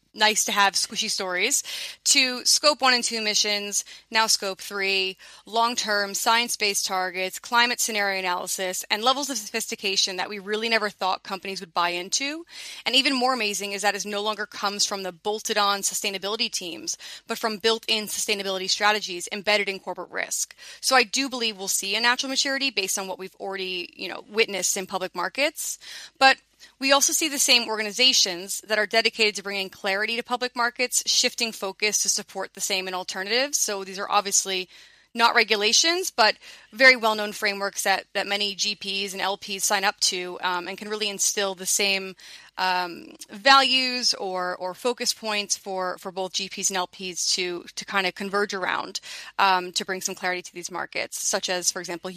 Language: English